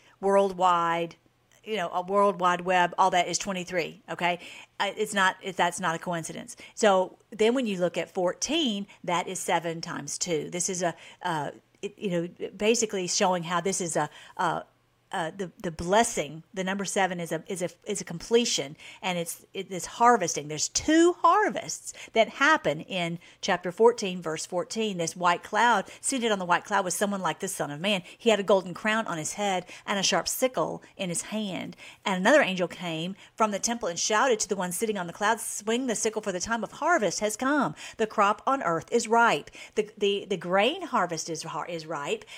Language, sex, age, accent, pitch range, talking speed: English, female, 50-69, American, 175-215 Hz, 200 wpm